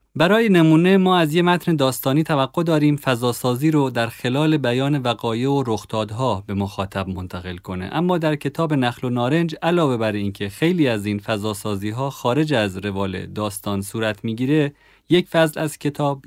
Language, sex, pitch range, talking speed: Persian, male, 110-140 Hz, 170 wpm